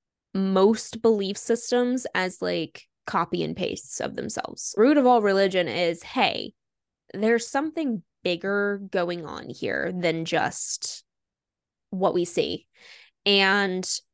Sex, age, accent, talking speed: female, 10-29, American, 120 wpm